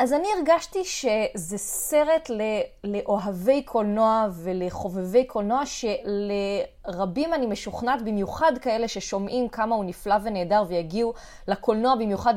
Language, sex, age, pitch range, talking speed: Hebrew, female, 20-39, 195-250 Hz, 105 wpm